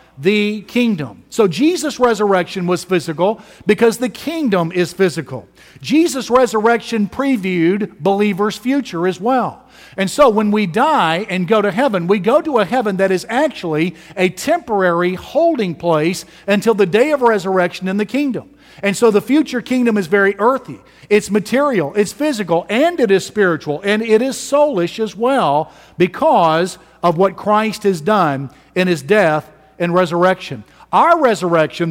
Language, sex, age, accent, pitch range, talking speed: English, male, 50-69, American, 165-220 Hz, 155 wpm